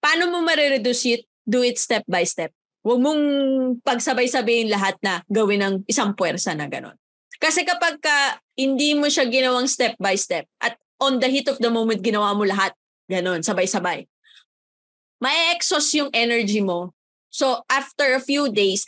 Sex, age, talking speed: female, 20-39, 165 wpm